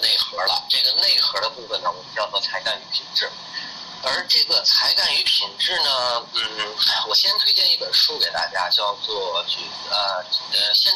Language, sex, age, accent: Chinese, male, 30-49, native